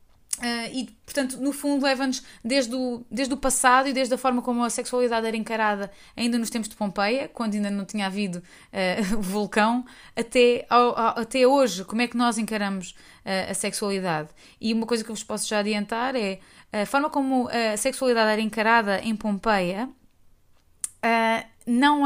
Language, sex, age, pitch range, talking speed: Portuguese, female, 20-39, 205-245 Hz, 165 wpm